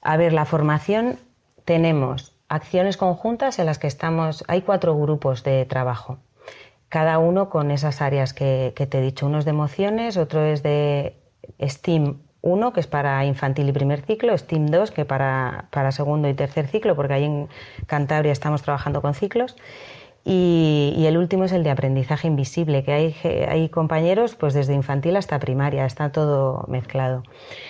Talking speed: 175 wpm